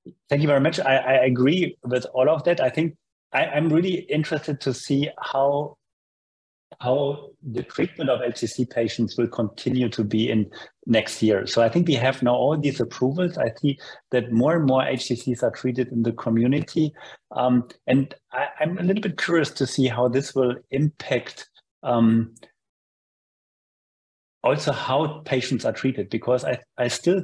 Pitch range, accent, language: 120-145 Hz, German, English